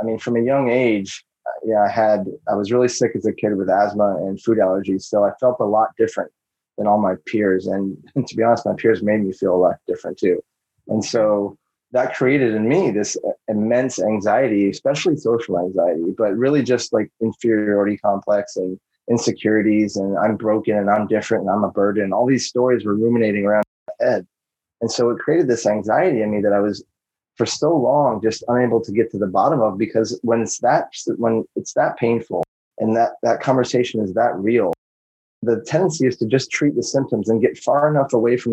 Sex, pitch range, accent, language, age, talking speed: male, 100-120 Hz, American, English, 30-49, 210 wpm